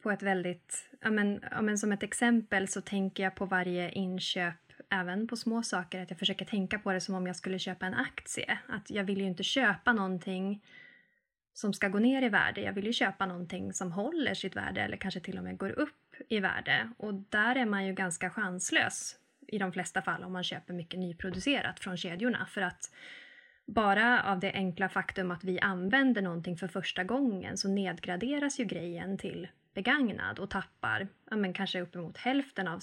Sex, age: female, 20-39